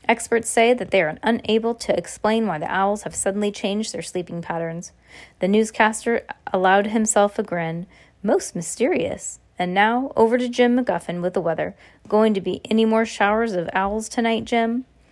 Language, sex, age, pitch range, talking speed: Russian, female, 20-39, 185-240 Hz, 175 wpm